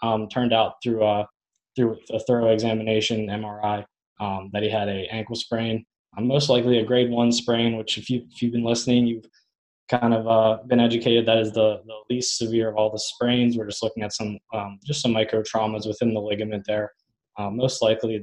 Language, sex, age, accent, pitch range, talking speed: English, male, 20-39, American, 110-120 Hz, 205 wpm